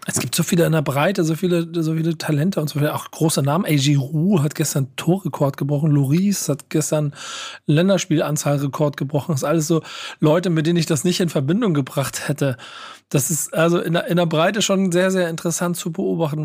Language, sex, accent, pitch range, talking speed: German, male, German, 150-180 Hz, 200 wpm